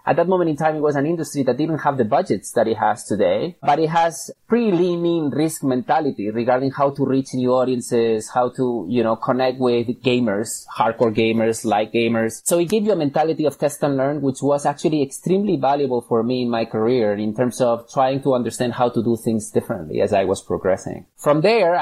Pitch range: 125-150 Hz